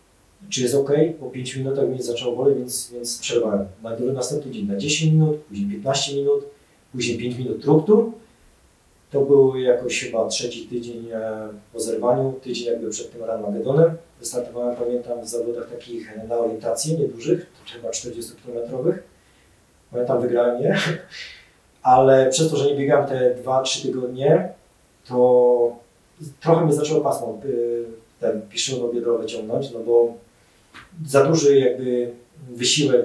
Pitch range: 120-145 Hz